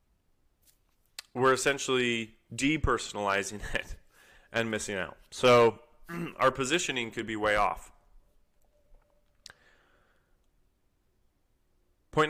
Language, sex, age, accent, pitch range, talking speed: English, male, 20-39, American, 105-130 Hz, 75 wpm